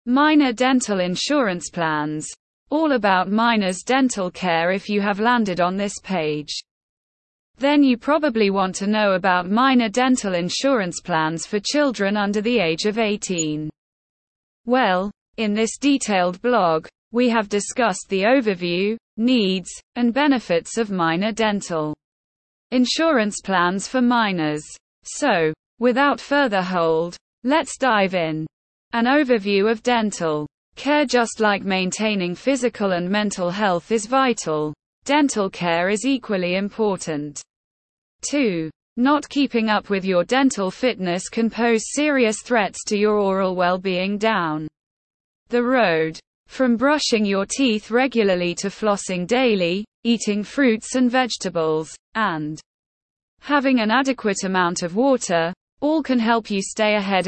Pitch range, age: 180-245 Hz, 20-39